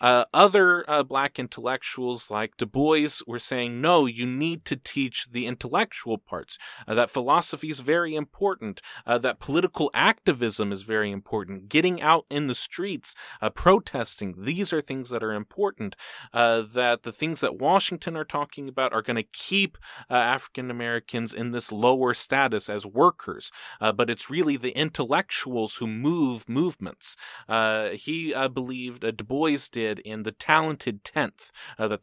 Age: 30-49